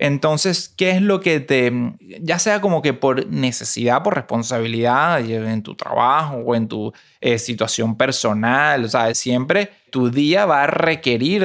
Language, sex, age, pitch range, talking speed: Spanish, male, 20-39, 120-145 Hz, 155 wpm